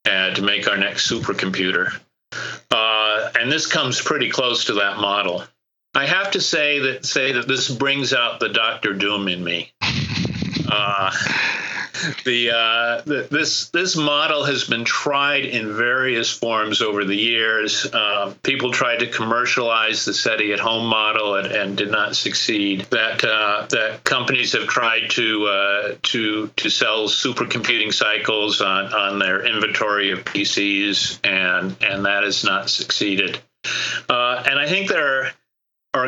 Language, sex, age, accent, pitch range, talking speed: English, male, 50-69, American, 105-135 Hz, 155 wpm